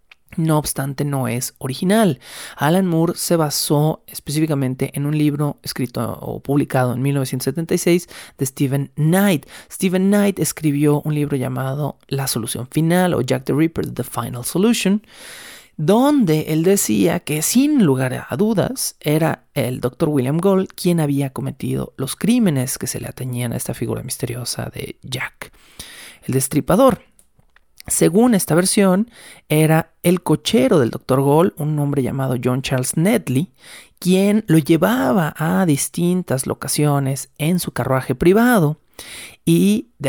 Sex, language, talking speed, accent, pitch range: male, Spanish, 140 wpm, Mexican, 135-175 Hz